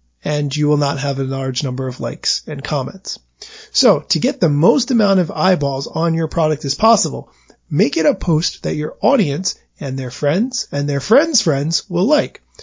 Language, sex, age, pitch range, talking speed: English, male, 30-49, 140-205 Hz, 195 wpm